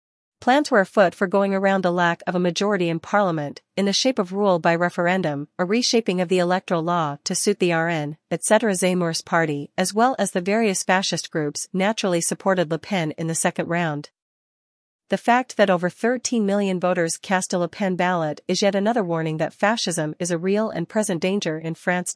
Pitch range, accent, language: 170-200 Hz, American, English